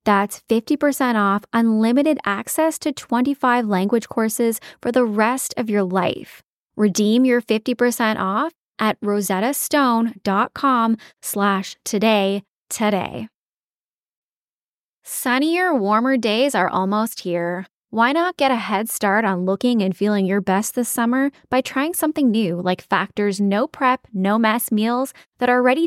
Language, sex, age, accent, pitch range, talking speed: English, female, 10-29, American, 200-255 Hz, 135 wpm